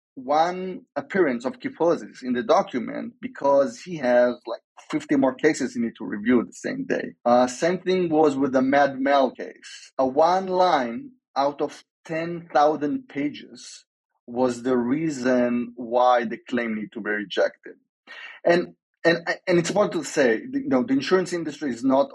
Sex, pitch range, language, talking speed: male, 115-180 Hz, English, 165 wpm